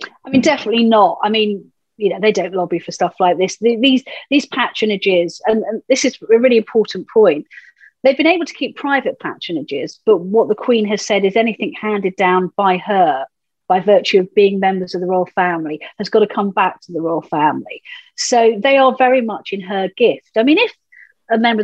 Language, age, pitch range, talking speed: English, 40-59, 185-230 Hz, 210 wpm